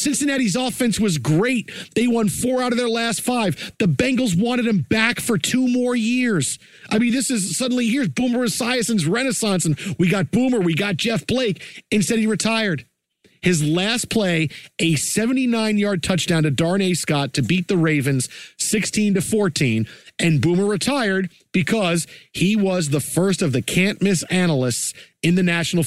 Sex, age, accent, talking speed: male, 50-69, American, 165 wpm